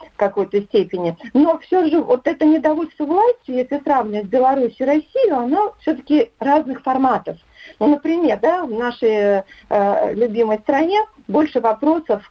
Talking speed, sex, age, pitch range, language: 135 wpm, female, 50-69, 195-290 Hz, Russian